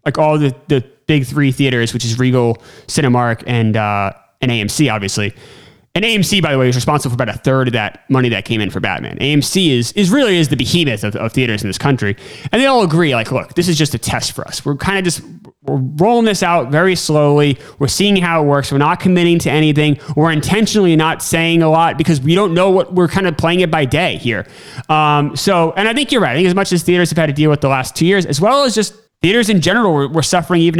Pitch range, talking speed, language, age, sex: 135-185 Hz, 260 wpm, English, 30-49, male